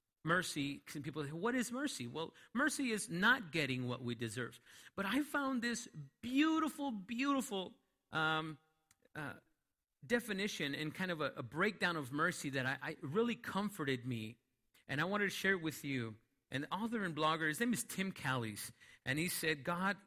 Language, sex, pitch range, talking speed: English, male, 145-205 Hz, 175 wpm